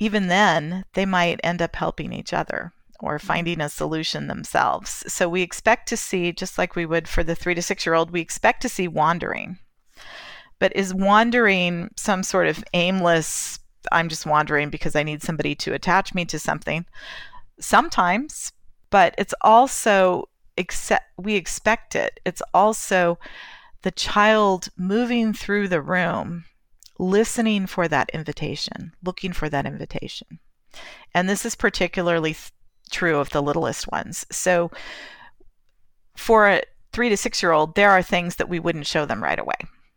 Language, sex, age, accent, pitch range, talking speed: English, female, 40-59, American, 160-205 Hz, 155 wpm